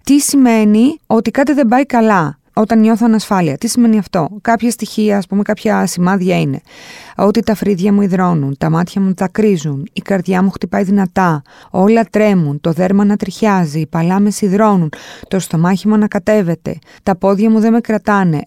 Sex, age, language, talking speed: female, 20-39, Greek, 170 wpm